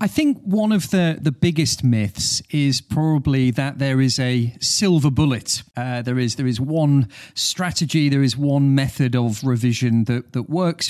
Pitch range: 120-150 Hz